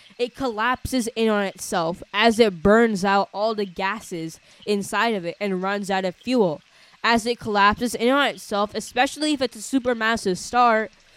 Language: English